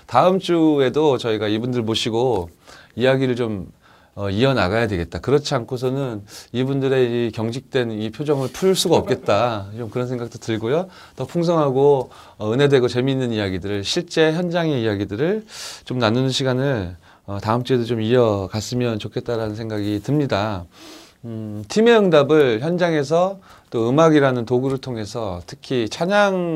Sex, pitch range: male, 100-140 Hz